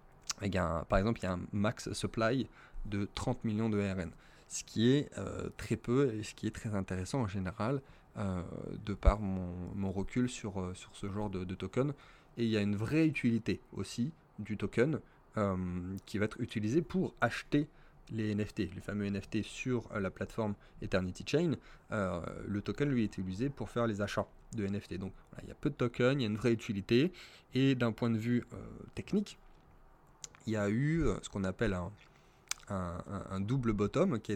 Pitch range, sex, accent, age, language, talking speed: 100-120 Hz, male, French, 20-39, French, 195 wpm